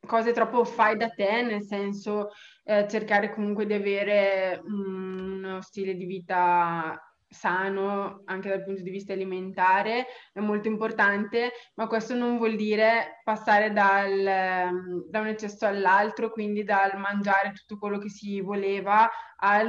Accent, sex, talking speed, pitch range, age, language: native, female, 140 wpm, 195-215 Hz, 20-39, Italian